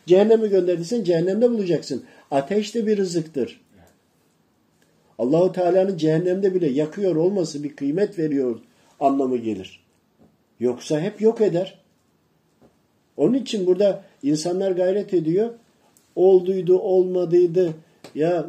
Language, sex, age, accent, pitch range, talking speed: Turkish, male, 50-69, native, 155-205 Hz, 105 wpm